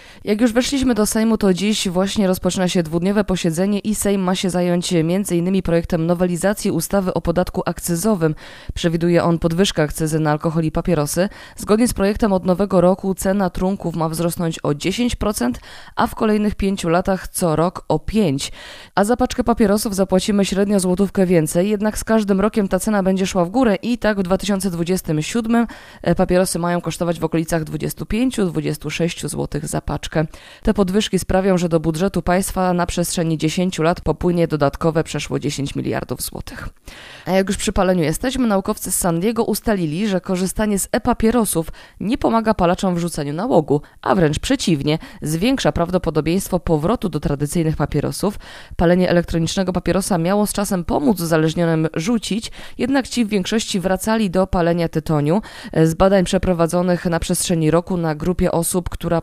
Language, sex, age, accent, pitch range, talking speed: Polish, female, 20-39, native, 170-200 Hz, 160 wpm